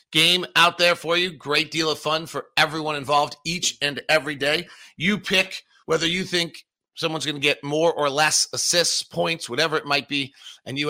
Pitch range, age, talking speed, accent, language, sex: 140-170 Hz, 40-59, 200 wpm, American, English, male